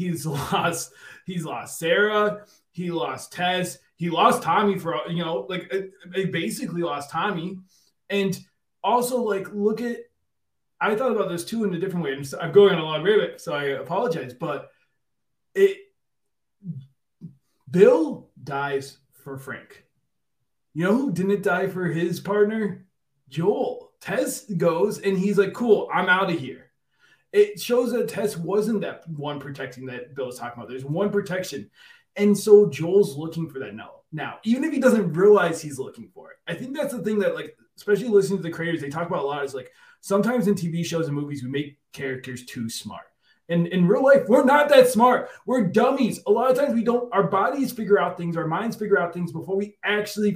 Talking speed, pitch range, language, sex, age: 190 wpm, 165-210 Hz, English, male, 20-39